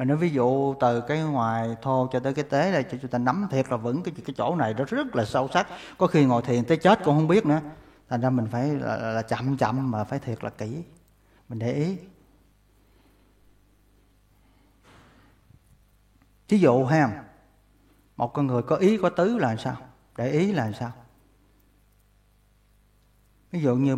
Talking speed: 180 wpm